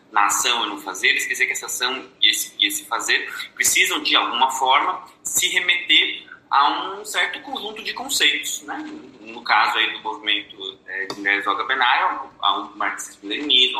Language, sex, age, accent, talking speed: Portuguese, male, 20-39, Brazilian, 185 wpm